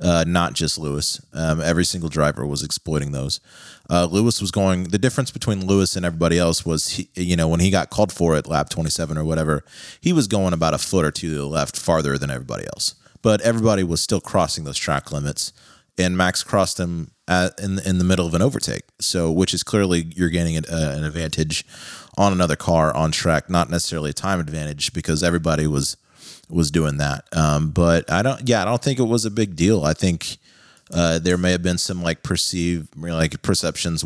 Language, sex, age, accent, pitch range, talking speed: English, male, 30-49, American, 80-95 Hz, 210 wpm